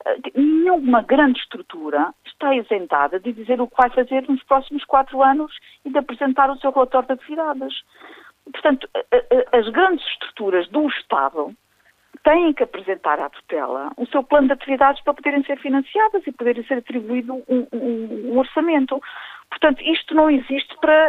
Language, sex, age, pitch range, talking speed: Portuguese, female, 50-69, 200-290 Hz, 160 wpm